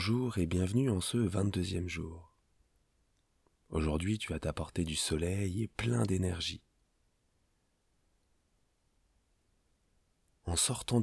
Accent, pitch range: French, 85-105 Hz